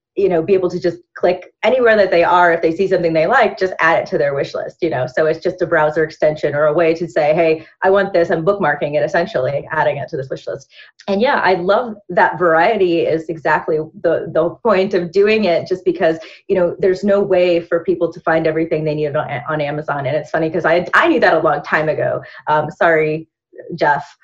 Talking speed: 240 wpm